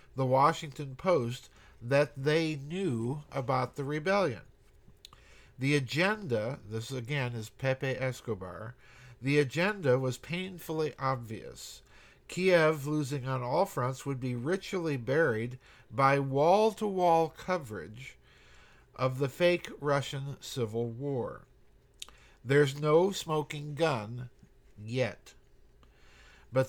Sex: male